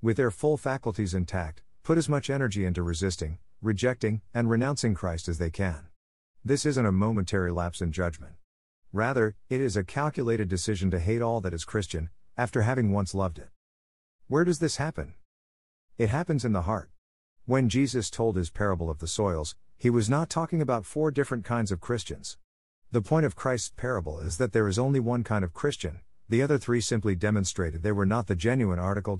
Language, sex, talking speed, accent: English, male, 195 wpm, American